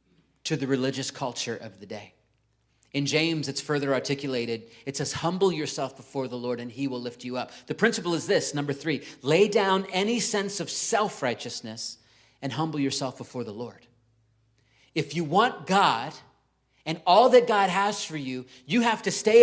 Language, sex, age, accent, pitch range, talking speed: English, male, 40-59, American, 125-165 Hz, 180 wpm